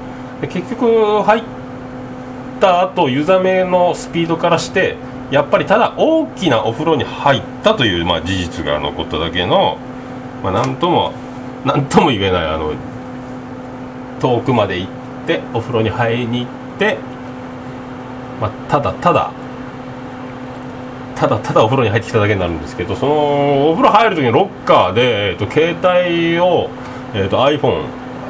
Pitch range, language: 120-165 Hz, Japanese